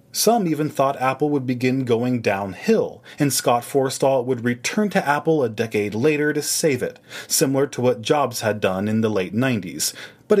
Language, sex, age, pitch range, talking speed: English, male, 30-49, 115-165 Hz, 185 wpm